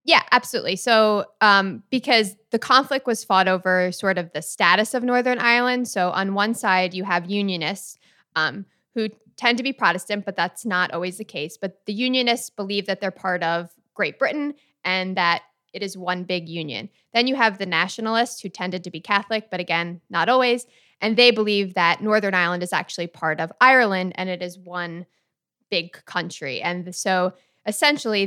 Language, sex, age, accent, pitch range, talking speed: English, female, 20-39, American, 175-220 Hz, 185 wpm